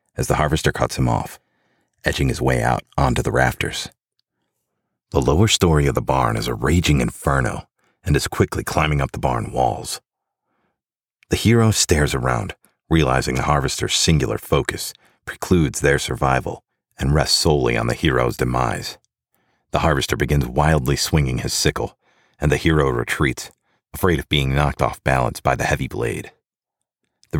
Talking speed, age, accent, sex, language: 160 wpm, 40-59, American, male, English